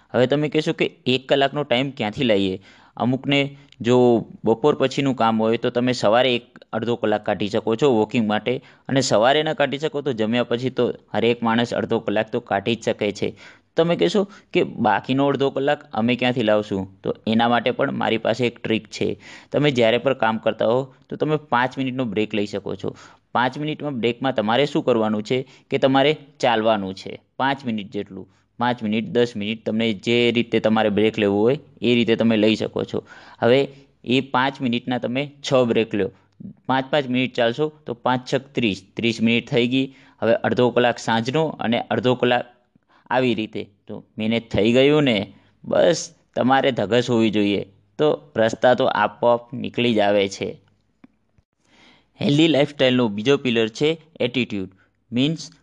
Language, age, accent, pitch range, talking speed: Gujarati, 20-39, native, 110-135 Hz, 155 wpm